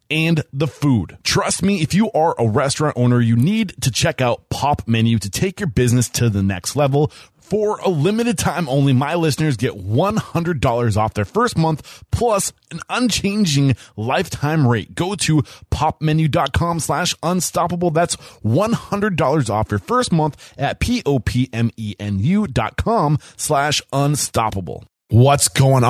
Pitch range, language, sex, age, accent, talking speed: 105-150 Hz, English, male, 20-39, American, 140 wpm